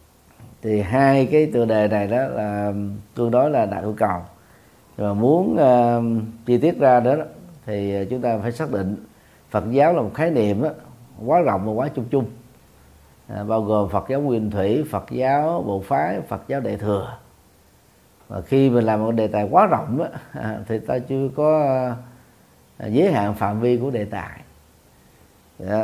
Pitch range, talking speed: 100-130 Hz, 185 wpm